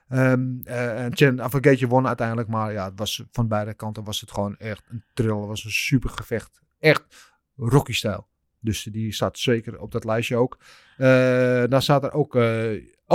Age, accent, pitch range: 30-49, Dutch, 115-145 Hz